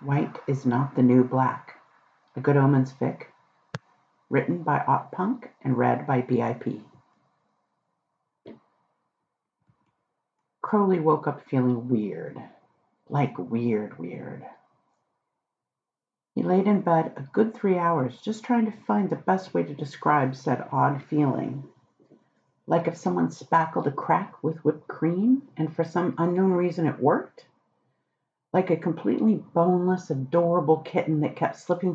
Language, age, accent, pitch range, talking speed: English, 50-69, American, 140-185 Hz, 135 wpm